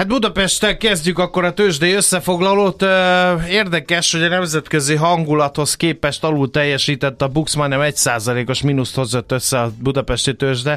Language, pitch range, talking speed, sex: Hungarian, 125-150 Hz, 140 wpm, male